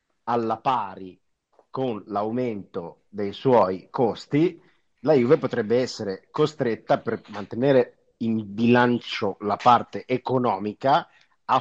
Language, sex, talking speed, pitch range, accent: Italian, male, 105 wpm, 100-120 Hz, native